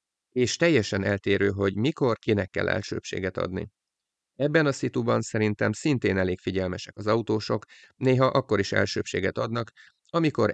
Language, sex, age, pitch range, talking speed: Hungarian, male, 30-49, 100-115 Hz, 135 wpm